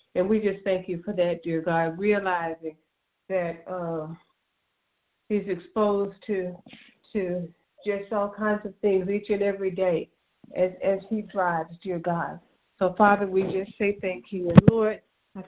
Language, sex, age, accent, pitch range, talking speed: English, female, 50-69, American, 180-215 Hz, 160 wpm